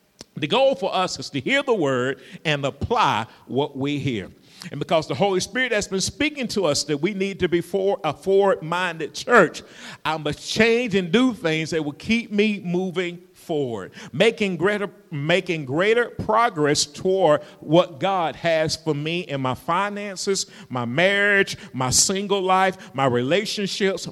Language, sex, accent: English, male, American